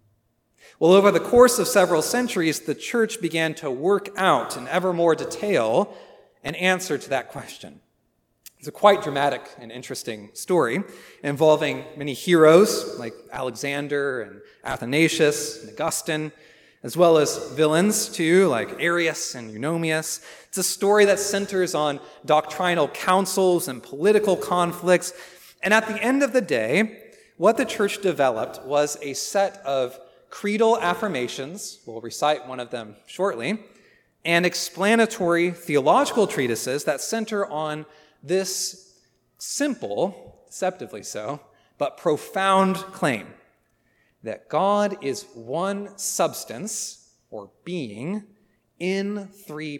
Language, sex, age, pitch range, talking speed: English, male, 30-49, 145-200 Hz, 125 wpm